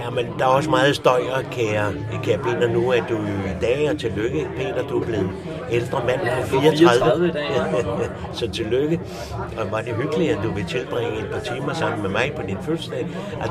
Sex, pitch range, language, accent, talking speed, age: male, 105-150 Hz, English, Danish, 200 wpm, 60-79